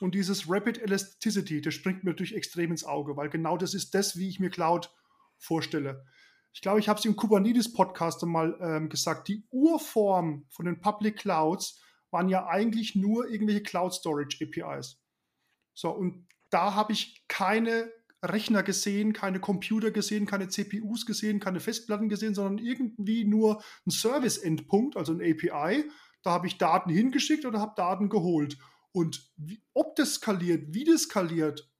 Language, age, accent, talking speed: German, 20-39, German, 160 wpm